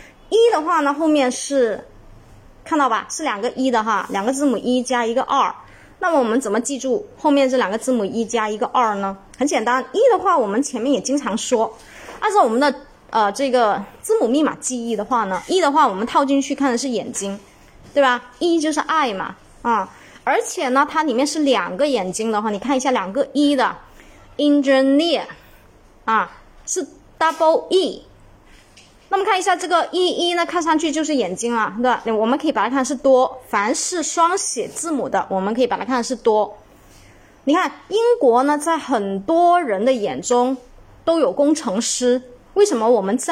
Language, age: Chinese, 20-39